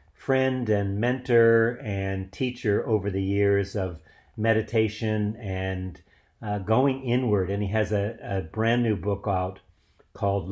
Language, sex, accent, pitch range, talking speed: English, male, American, 95-110 Hz, 135 wpm